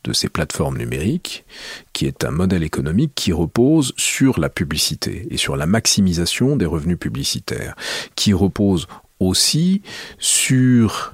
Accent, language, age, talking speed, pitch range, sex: French, French, 40-59, 135 wpm, 85-120 Hz, male